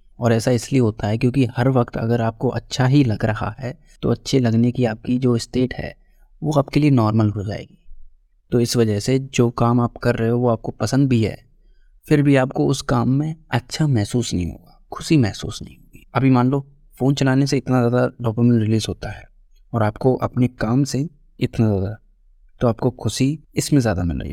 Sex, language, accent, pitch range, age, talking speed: male, Hindi, native, 110-130 Hz, 20-39, 205 wpm